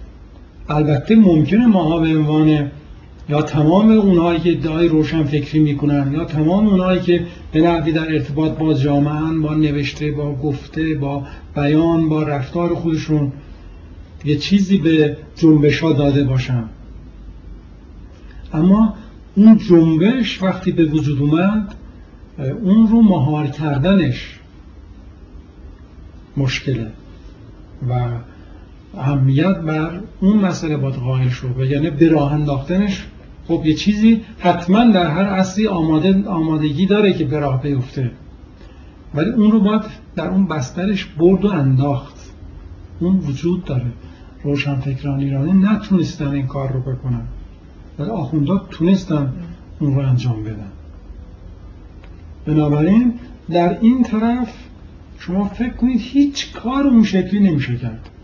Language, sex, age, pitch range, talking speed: Persian, male, 60-79, 125-180 Hz, 120 wpm